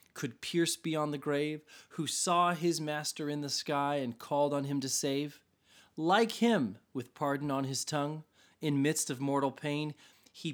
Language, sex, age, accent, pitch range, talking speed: English, male, 30-49, American, 125-165 Hz, 175 wpm